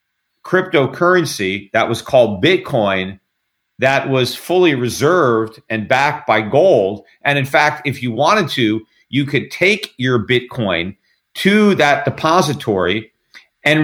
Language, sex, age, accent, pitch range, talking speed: English, male, 40-59, American, 125-175 Hz, 125 wpm